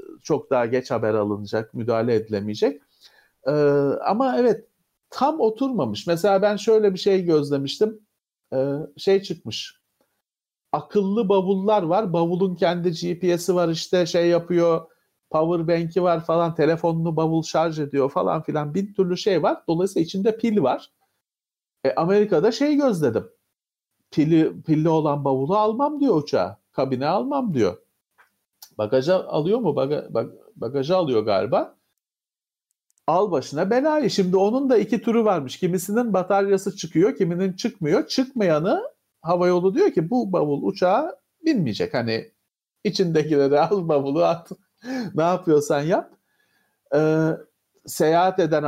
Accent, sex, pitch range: native, male, 155-205 Hz